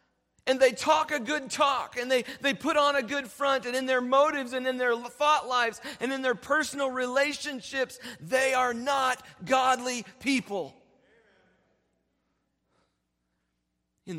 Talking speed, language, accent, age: 145 wpm, English, American, 40-59